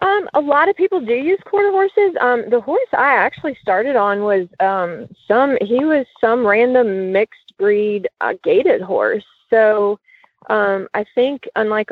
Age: 20-39